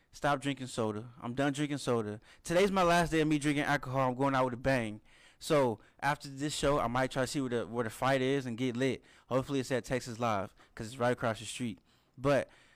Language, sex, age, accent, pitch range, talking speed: English, male, 20-39, American, 125-155 Hz, 235 wpm